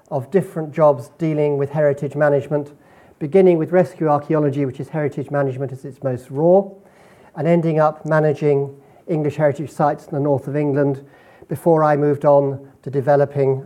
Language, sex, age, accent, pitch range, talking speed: English, male, 50-69, British, 140-170 Hz, 165 wpm